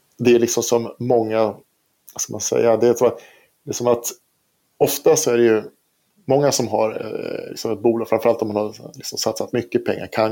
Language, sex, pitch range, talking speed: Swedish, male, 110-125 Hz, 210 wpm